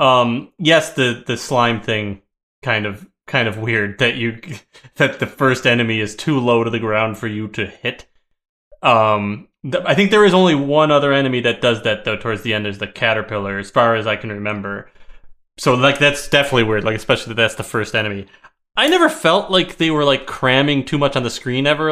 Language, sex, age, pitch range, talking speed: English, male, 20-39, 110-145 Hz, 215 wpm